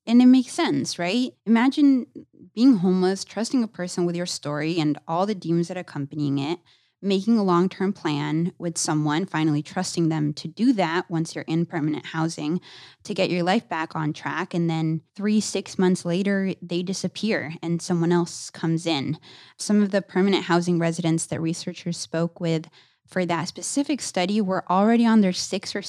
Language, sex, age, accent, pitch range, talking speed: English, female, 20-39, American, 160-195 Hz, 185 wpm